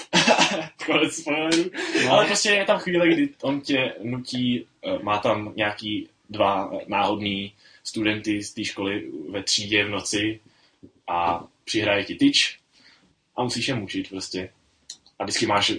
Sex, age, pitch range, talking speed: male, 10-29, 100-140 Hz, 130 wpm